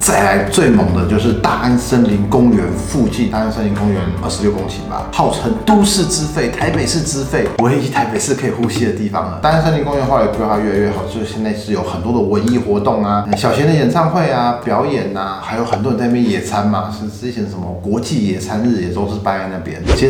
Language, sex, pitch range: Chinese, male, 95-125 Hz